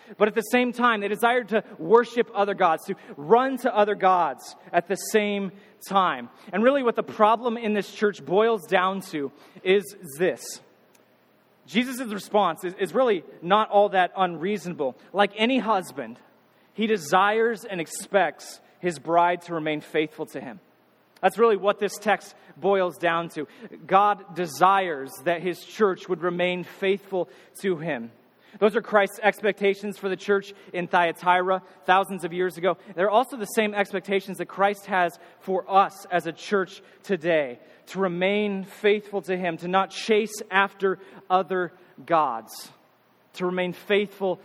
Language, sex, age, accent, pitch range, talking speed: English, male, 30-49, American, 175-205 Hz, 155 wpm